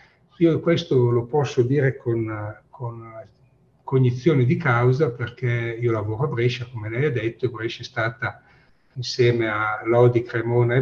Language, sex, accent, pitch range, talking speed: Italian, male, native, 115-150 Hz, 155 wpm